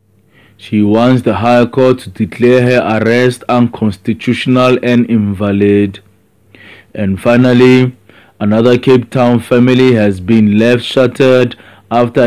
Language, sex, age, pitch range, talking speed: English, male, 20-39, 105-125 Hz, 110 wpm